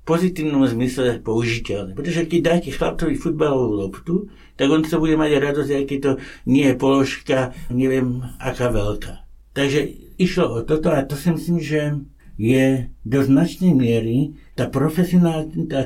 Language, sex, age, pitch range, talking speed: Slovak, male, 60-79, 115-155 Hz, 150 wpm